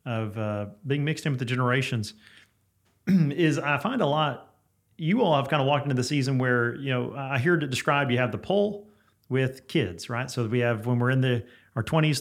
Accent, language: American, English